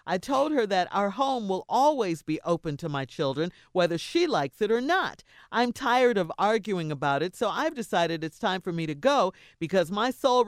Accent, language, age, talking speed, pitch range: American, English, 50-69, 210 wpm, 170-245 Hz